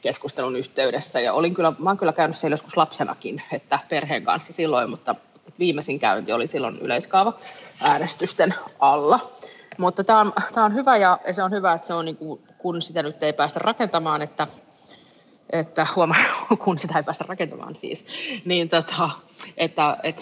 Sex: female